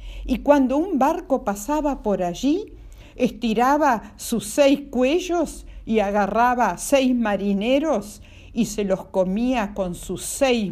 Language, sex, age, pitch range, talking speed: Spanish, female, 50-69, 200-265 Hz, 130 wpm